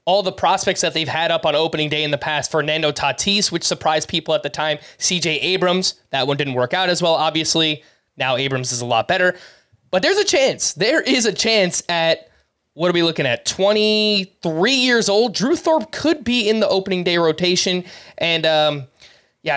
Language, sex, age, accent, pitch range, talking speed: English, male, 20-39, American, 150-195 Hz, 200 wpm